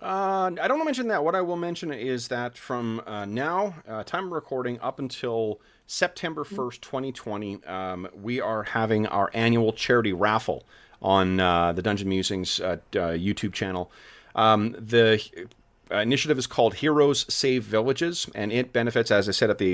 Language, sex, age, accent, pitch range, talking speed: English, male, 30-49, American, 95-120 Hz, 180 wpm